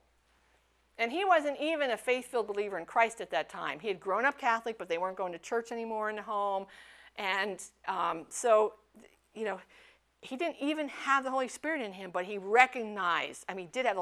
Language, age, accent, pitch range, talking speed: English, 50-69, American, 170-265 Hz, 215 wpm